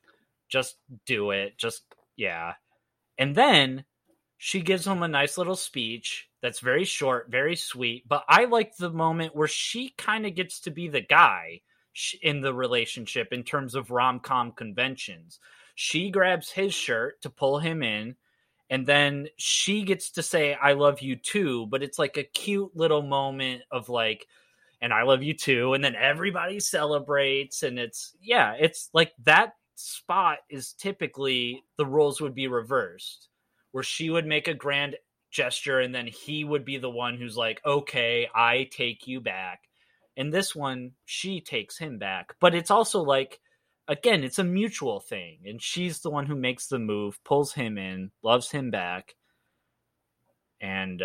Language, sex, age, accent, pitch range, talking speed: English, male, 30-49, American, 125-165 Hz, 170 wpm